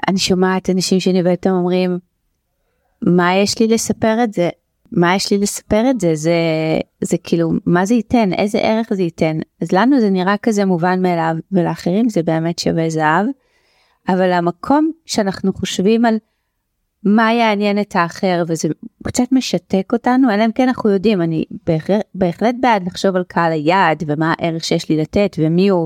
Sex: female